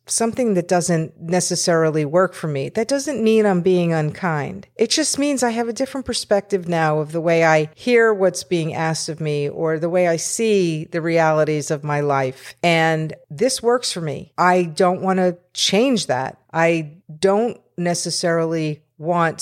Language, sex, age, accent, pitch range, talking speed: English, female, 50-69, American, 155-195 Hz, 175 wpm